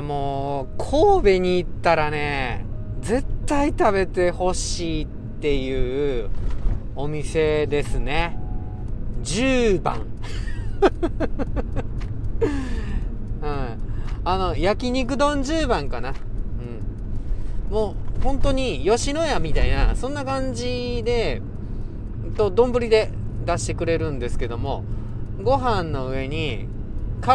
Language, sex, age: Japanese, male, 40-59